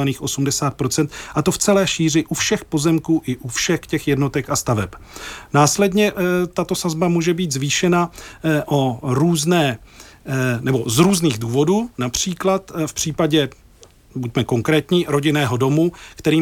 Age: 40-59